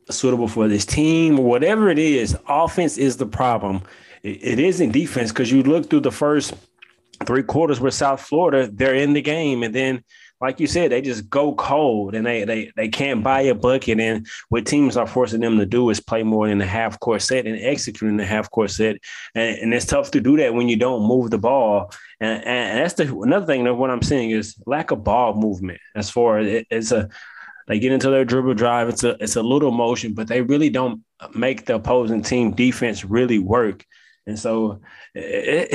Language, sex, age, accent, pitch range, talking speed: English, male, 20-39, American, 115-135 Hz, 215 wpm